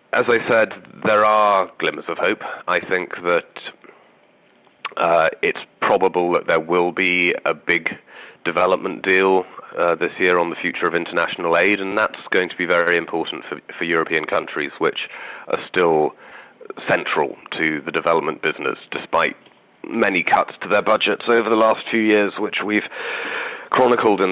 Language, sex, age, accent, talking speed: English, male, 30-49, British, 160 wpm